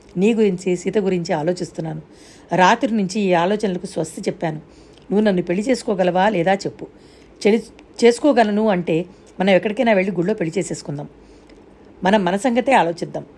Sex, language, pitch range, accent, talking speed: female, Telugu, 170-210 Hz, native, 135 wpm